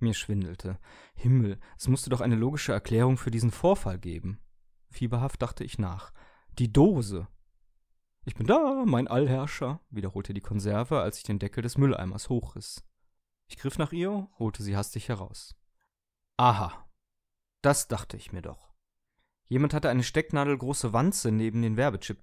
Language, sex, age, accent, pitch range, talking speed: German, male, 30-49, German, 95-130 Hz, 150 wpm